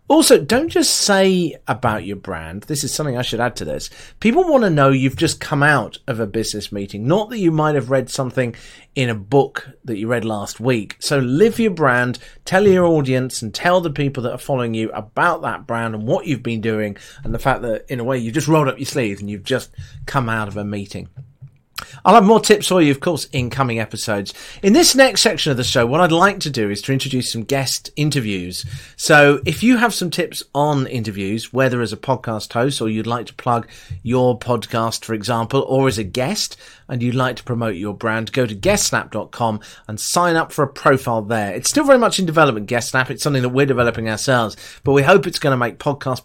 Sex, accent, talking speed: male, British, 230 wpm